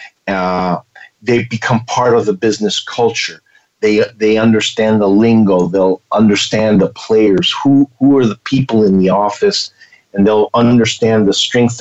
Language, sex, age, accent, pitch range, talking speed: English, male, 50-69, American, 100-125 Hz, 150 wpm